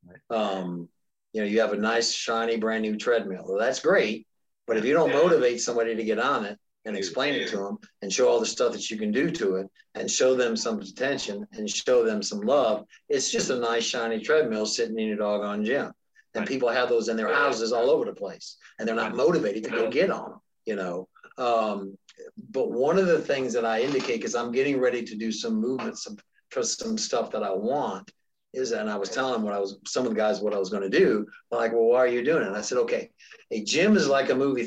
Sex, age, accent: male, 50-69, American